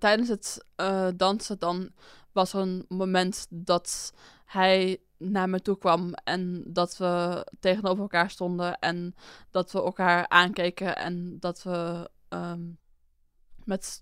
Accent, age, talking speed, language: Dutch, 20-39, 125 wpm, Dutch